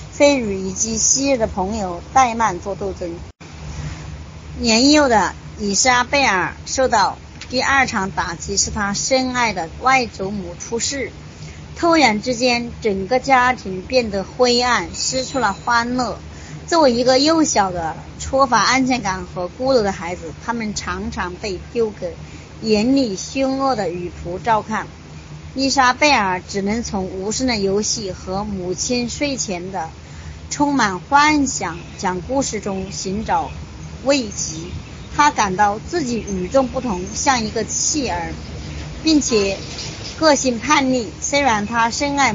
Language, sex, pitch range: Chinese, male, 185-255 Hz